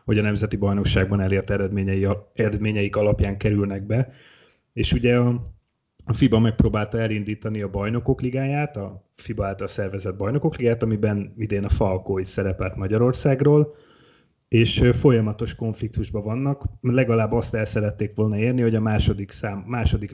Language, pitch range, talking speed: Hungarian, 100-115 Hz, 135 wpm